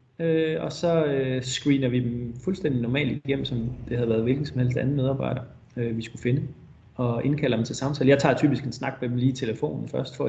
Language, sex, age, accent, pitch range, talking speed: Danish, male, 30-49, native, 125-145 Hz, 235 wpm